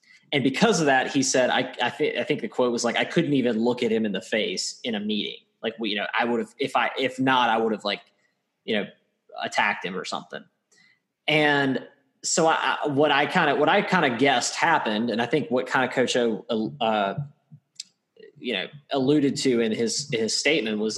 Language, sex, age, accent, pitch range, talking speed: English, male, 20-39, American, 120-150 Hz, 230 wpm